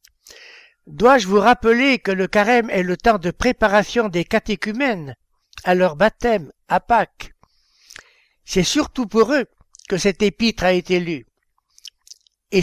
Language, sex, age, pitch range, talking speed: French, male, 60-79, 185-230 Hz, 140 wpm